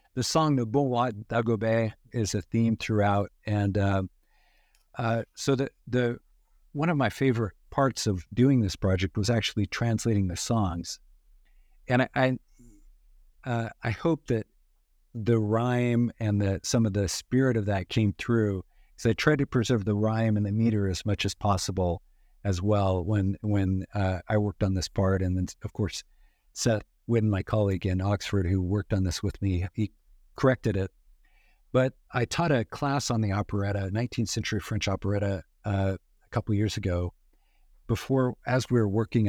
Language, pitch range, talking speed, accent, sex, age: English, 100-120 Hz, 170 wpm, American, male, 50-69